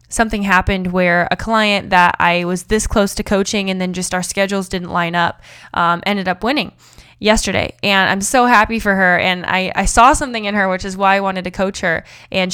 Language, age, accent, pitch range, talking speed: English, 20-39, American, 185-220 Hz, 225 wpm